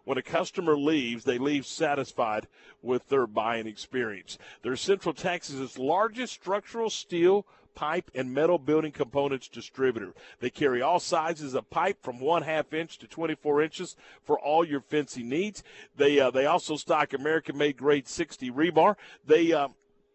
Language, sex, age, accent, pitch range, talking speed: English, male, 50-69, American, 140-190 Hz, 160 wpm